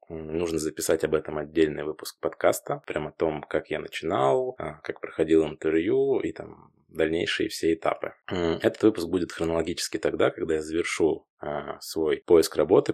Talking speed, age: 150 wpm, 20-39